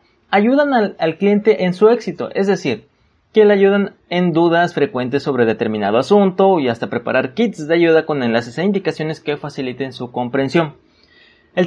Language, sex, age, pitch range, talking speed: Spanish, male, 30-49, 135-195 Hz, 170 wpm